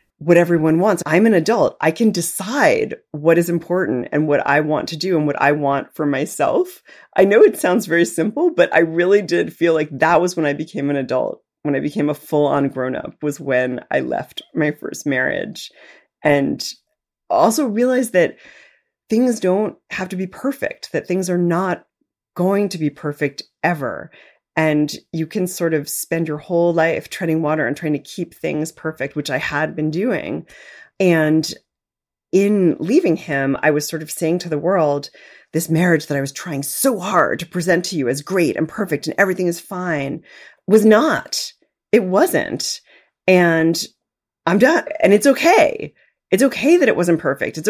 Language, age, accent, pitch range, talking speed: English, 30-49, American, 150-190 Hz, 185 wpm